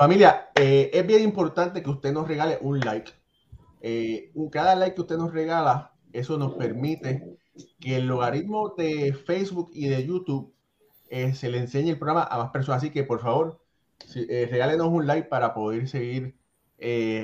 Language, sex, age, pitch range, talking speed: Spanish, male, 30-49, 125-160 Hz, 180 wpm